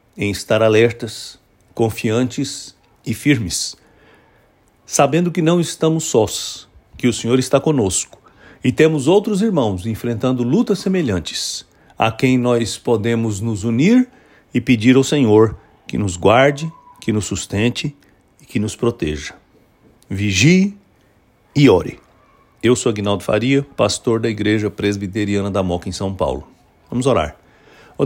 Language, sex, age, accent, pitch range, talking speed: English, male, 60-79, Brazilian, 105-135 Hz, 135 wpm